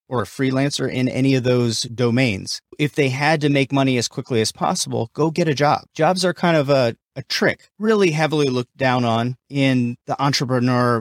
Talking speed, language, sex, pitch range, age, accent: 200 wpm, English, male, 120-140 Hz, 30-49, American